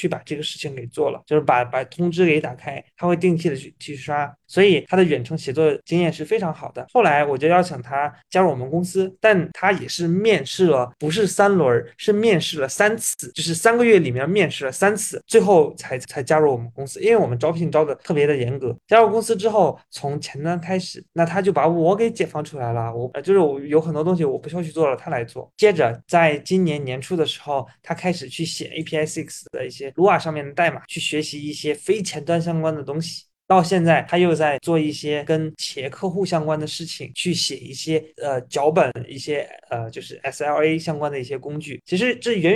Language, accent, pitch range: Chinese, native, 145-185 Hz